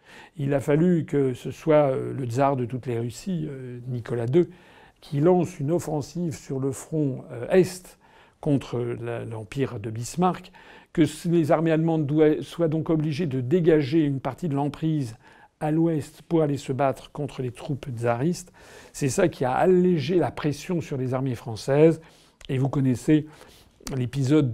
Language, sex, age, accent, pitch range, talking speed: French, male, 50-69, French, 130-160 Hz, 155 wpm